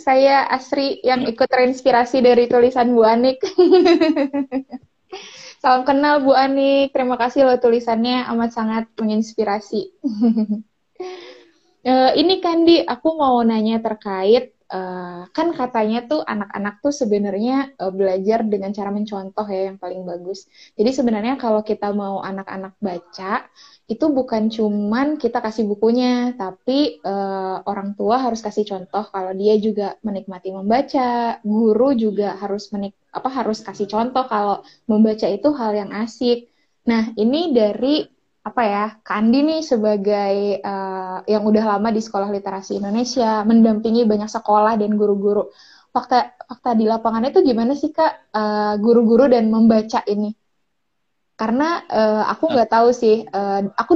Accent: native